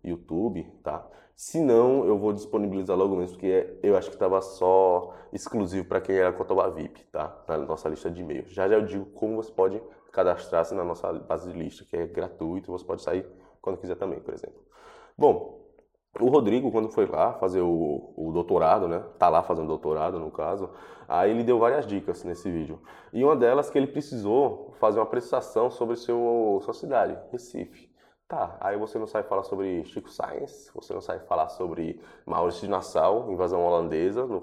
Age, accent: 20-39, Brazilian